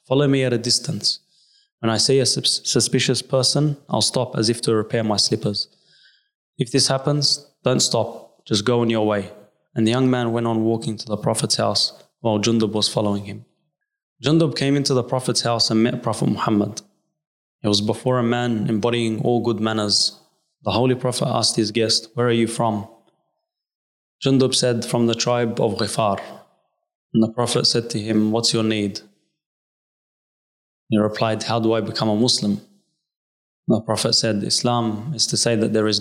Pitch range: 110-130 Hz